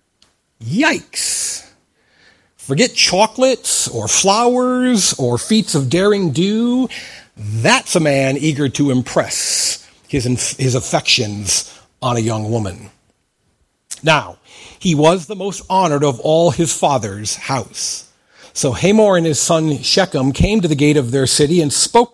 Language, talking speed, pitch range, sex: English, 135 wpm, 130-200 Hz, male